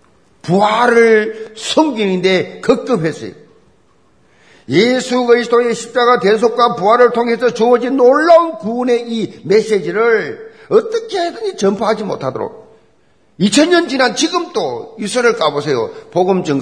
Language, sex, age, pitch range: Korean, male, 50-69, 175-290 Hz